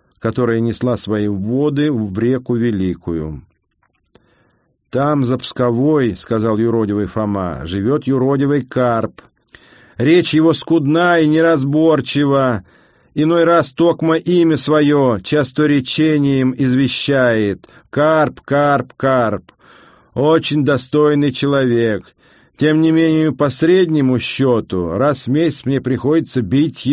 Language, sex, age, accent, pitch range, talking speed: Russian, male, 50-69, native, 120-150 Hz, 105 wpm